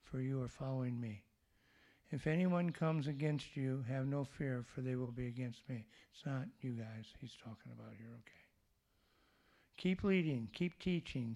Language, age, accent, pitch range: English, 60-79, American, 115-155 Hz